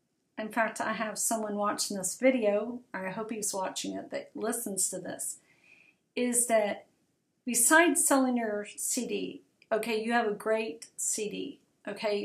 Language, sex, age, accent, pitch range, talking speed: English, female, 40-59, American, 215-265 Hz, 145 wpm